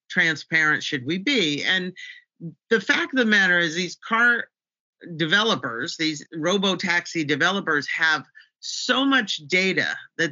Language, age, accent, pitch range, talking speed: English, 50-69, American, 150-195 Hz, 135 wpm